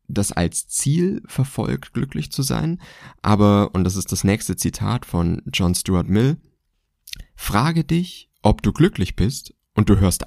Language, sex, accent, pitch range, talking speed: German, male, German, 90-110 Hz, 160 wpm